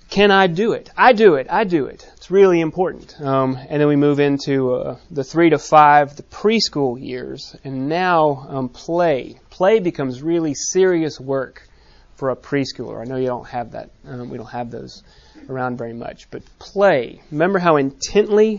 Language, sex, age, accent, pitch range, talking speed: English, male, 30-49, American, 130-165 Hz, 185 wpm